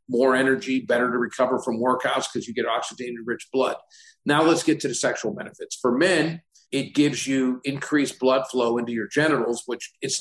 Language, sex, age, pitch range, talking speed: English, male, 50-69, 120-140 Hz, 195 wpm